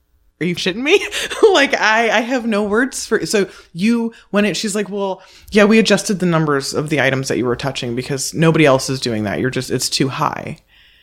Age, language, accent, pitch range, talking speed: 20-39, English, American, 145-185 Hz, 230 wpm